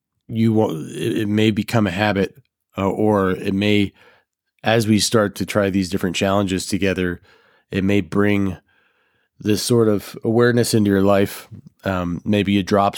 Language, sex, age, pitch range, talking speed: English, male, 20-39, 90-105 Hz, 155 wpm